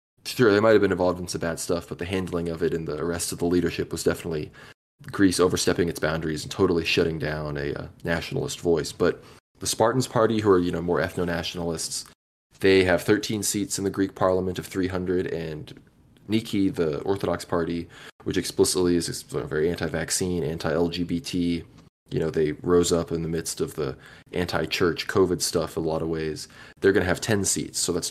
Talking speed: 200 wpm